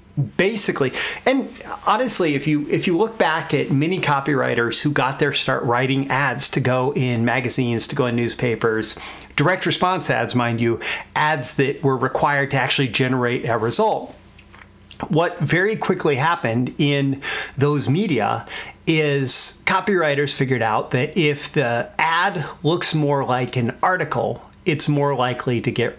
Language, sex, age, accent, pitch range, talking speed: English, male, 40-59, American, 125-150 Hz, 150 wpm